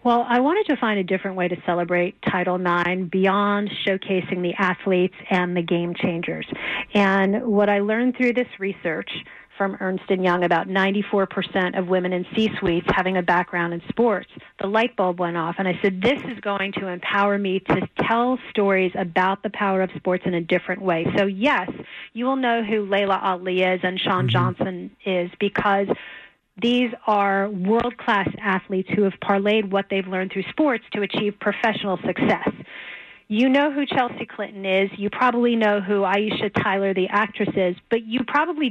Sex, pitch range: female, 185-215 Hz